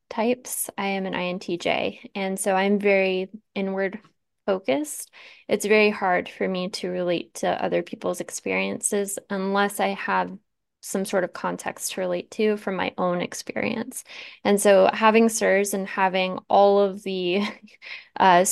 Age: 10-29